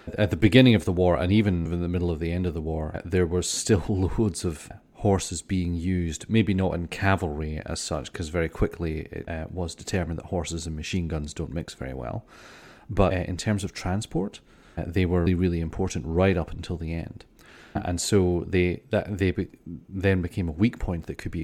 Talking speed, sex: 205 wpm, male